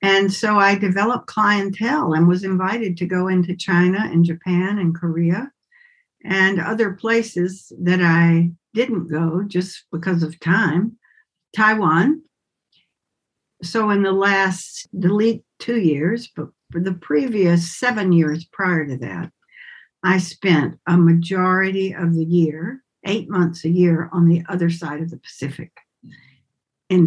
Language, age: English, 60-79